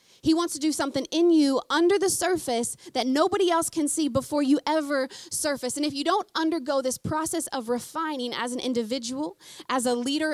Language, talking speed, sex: English, 195 wpm, female